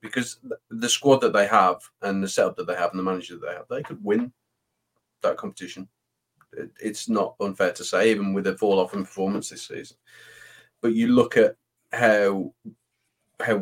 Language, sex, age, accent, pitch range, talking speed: English, male, 20-39, British, 95-115 Hz, 190 wpm